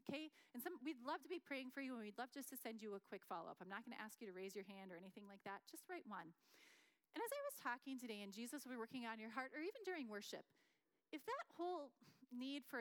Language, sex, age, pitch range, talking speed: English, female, 30-49, 195-275 Hz, 270 wpm